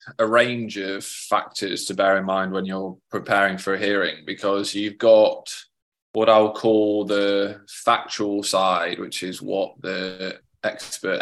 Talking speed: 150 wpm